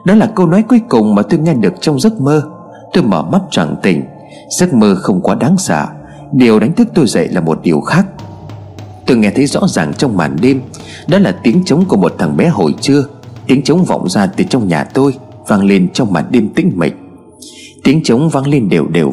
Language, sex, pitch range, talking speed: Vietnamese, male, 130-200 Hz, 225 wpm